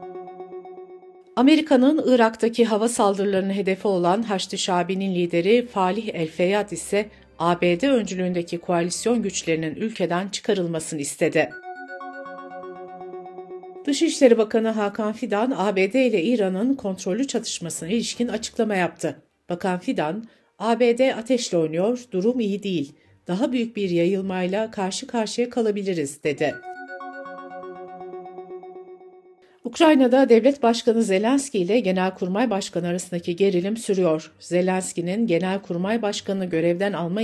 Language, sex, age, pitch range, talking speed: Turkish, female, 60-79, 175-235 Hz, 100 wpm